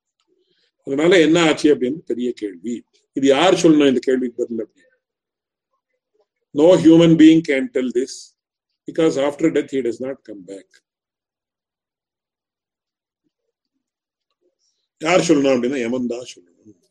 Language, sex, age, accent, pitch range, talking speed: English, male, 50-69, Indian, 130-180 Hz, 35 wpm